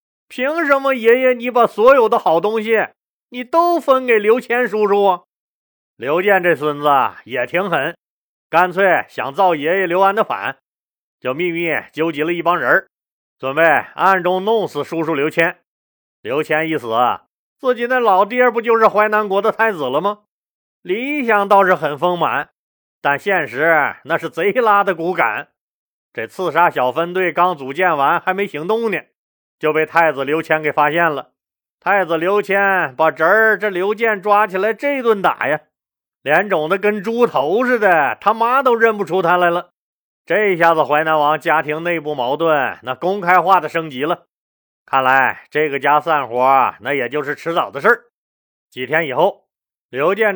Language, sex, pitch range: Chinese, male, 155-215 Hz